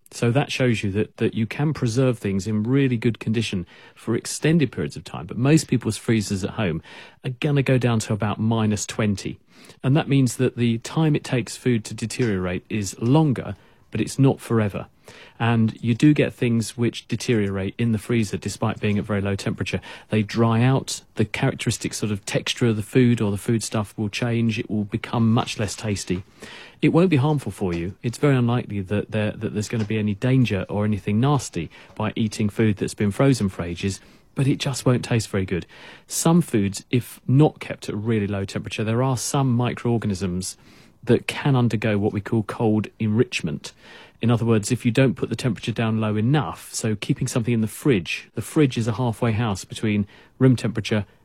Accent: British